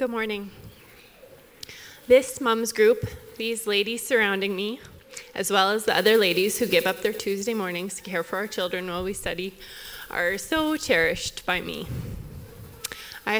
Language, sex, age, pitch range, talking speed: English, female, 20-39, 200-280 Hz, 155 wpm